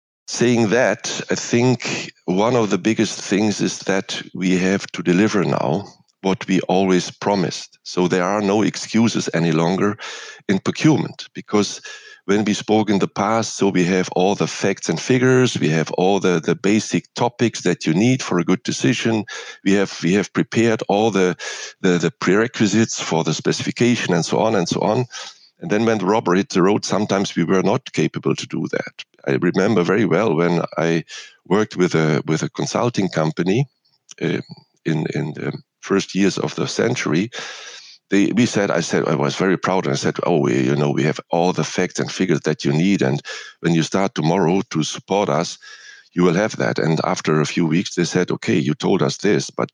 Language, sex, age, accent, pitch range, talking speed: English, male, 50-69, German, 85-110 Hz, 200 wpm